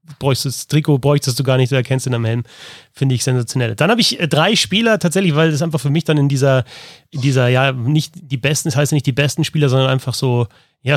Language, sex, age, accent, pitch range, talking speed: German, male, 30-49, German, 130-155 Hz, 255 wpm